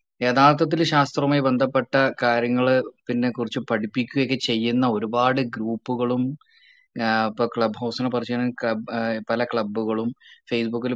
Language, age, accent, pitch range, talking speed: Malayalam, 20-39, native, 115-160 Hz, 90 wpm